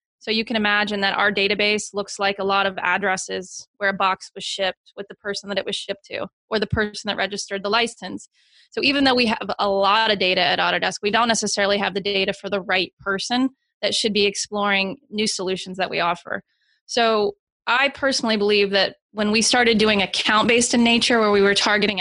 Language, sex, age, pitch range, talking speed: English, female, 20-39, 195-225 Hz, 220 wpm